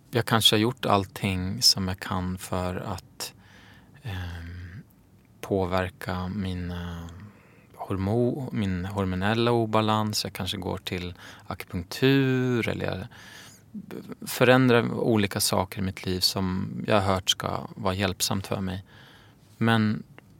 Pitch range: 95-115 Hz